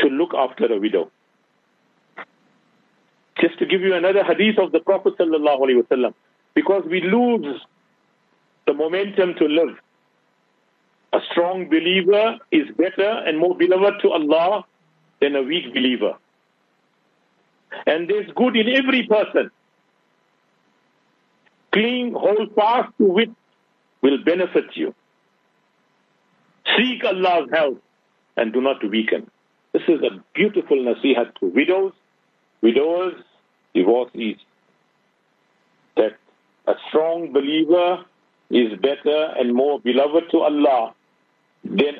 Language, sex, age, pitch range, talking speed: English, male, 60-79, 160-240 Hz, 110 wpm